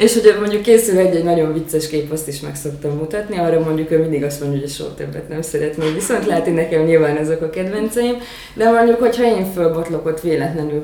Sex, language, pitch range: female, Hungarian, 155-175 Hz